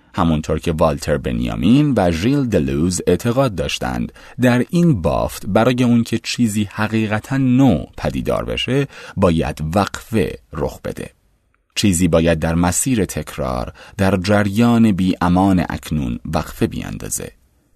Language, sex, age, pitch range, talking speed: Persian, male, 30-49, 75-110 Hz, 120 wpm